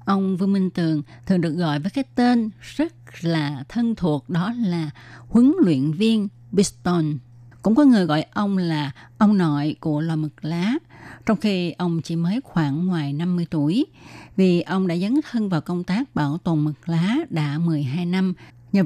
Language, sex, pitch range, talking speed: Vietnamese, female, 155-200 Hz, 180 wpm